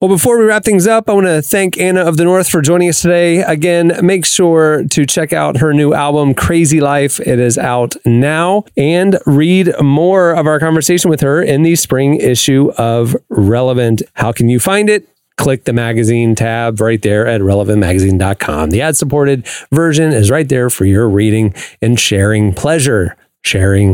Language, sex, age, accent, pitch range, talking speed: English, male, 30-49, American, 110-160 Hz, 185 wpm